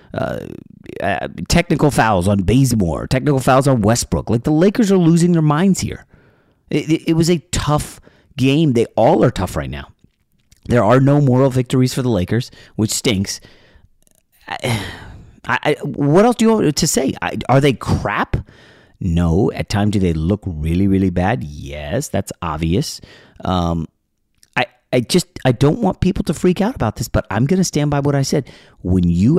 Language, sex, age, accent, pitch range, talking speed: English, male, 30-49, American, 95-145 Hz, 180 wpm